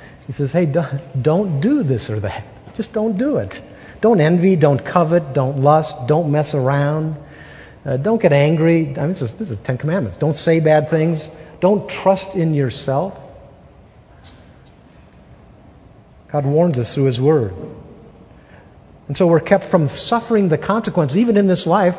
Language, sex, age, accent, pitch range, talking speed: English, male, 50-69, American, 135-170 Hz, 160 wpm